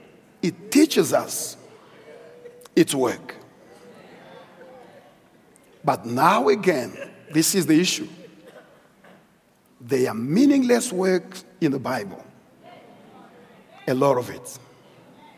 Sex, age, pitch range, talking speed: male, 50-69, 125-155 Hz, 90 wpm